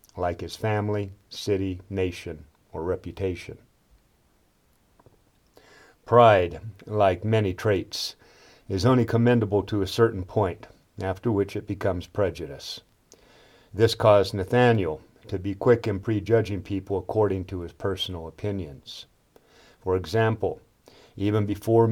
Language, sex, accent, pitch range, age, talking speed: English, male, American, 95-115 Hz, 50-69, 110 wpm